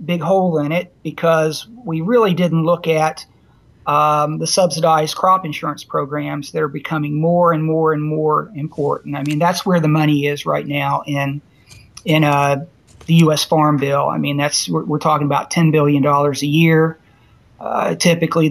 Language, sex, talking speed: English, male, 180 wpm